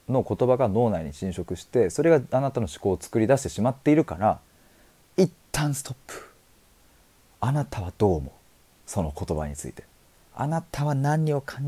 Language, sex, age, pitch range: Japanese, male, 40-59, 90-135 Hz